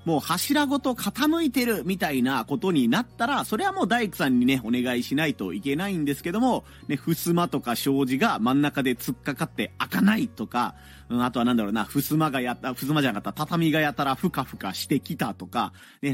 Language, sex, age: Japanese, male, 40-59